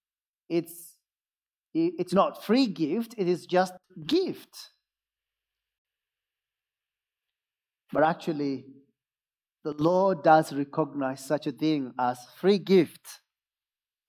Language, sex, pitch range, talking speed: English, male, 165-225 Hz, 90 wpm